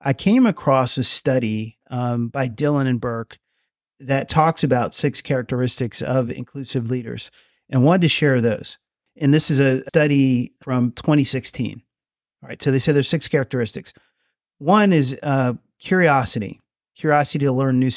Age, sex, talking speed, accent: 30-49, male, 155 wpm, American